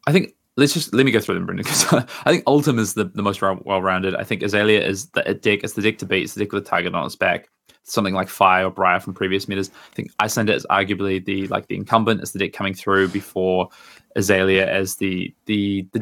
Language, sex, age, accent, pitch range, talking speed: English, male, 20-39, Australian, 95-110 Hz, 260 wpm